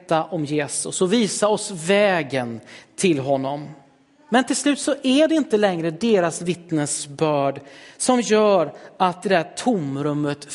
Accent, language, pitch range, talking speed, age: native, Swedish, 155-220 Hz, 135 wpm, 40-59